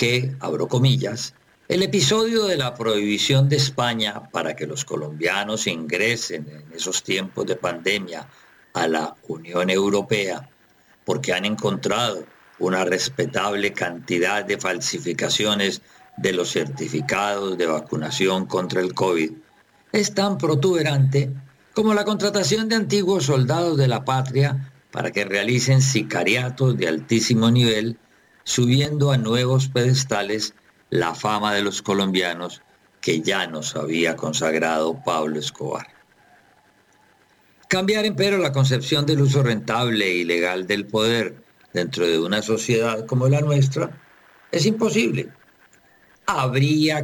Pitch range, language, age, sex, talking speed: 100-140 Hz, Spanish, 50-69, male, 125 wpm